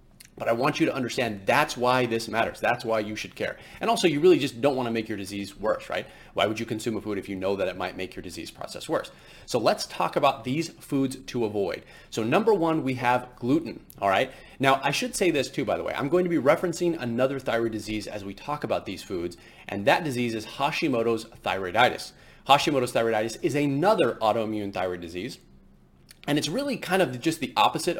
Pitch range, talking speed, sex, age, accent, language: 110-140 Hz, 225 wpm, male, 30-49, American, English